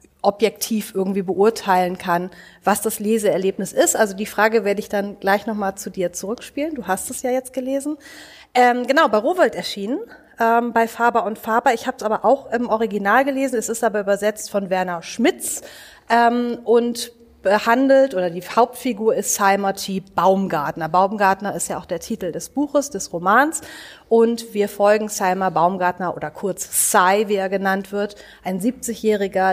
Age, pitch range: 30-49, 190-235 Hz